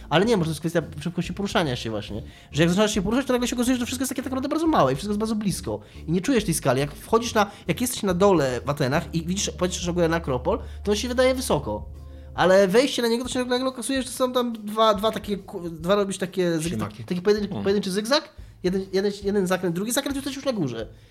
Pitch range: 135-215 Hz